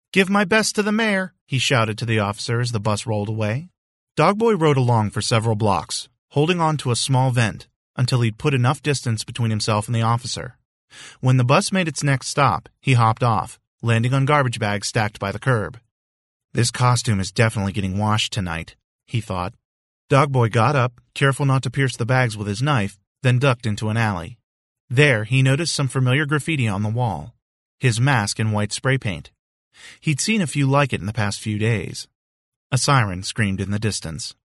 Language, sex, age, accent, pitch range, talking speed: English, male, 40-59, American, 105-135 Hz, 200 wpm